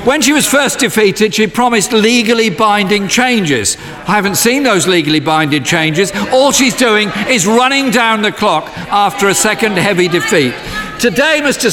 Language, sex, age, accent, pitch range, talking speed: English, male, 50-69, British, 190-255 Hz, 165 wpm